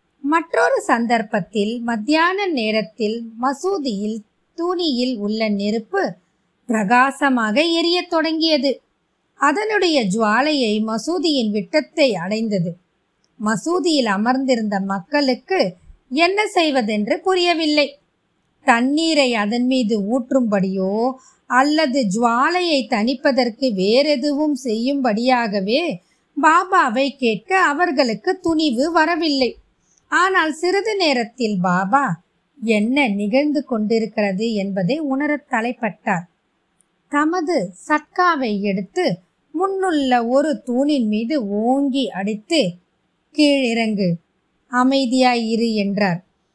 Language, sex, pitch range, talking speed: Tamil, female, 215-300 Hz, 60 wpm